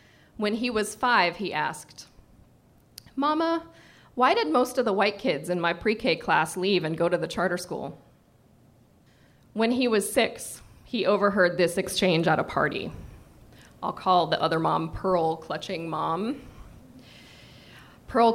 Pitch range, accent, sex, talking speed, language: 195-285 Hz, American, female, 145 wpm, English